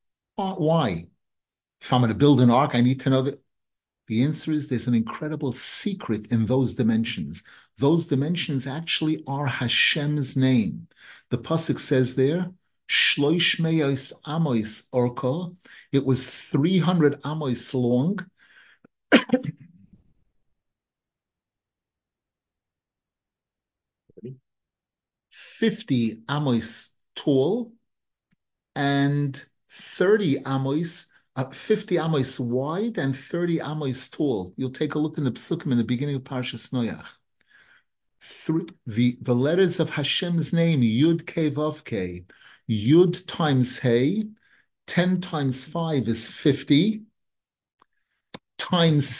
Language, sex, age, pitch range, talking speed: English, male, 60-79, 125-165 Hz, 105 wpm